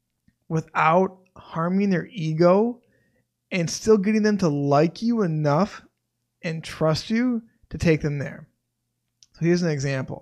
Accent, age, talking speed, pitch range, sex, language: American, 20-39, 135 wpm, 140-175 Hz, male, English